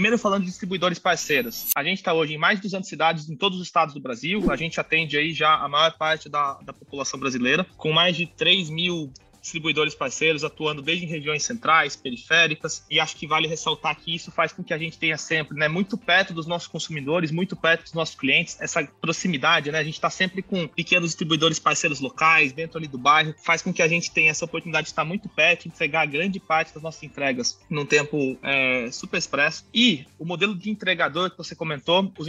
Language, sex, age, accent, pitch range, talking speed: Portuguese, male, 20-39, Brazilian, 155-175 Hz, 220 wpm